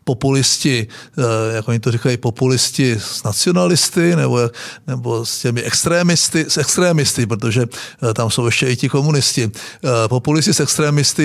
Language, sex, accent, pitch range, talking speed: Czech, male, native, 125-150 Hz, 140 wpm